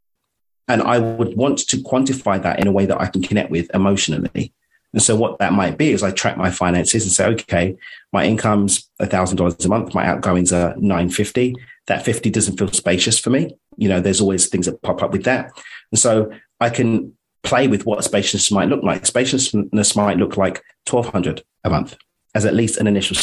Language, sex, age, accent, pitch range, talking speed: English, male, 30-49, British, 90-115 Hz, 205 wpm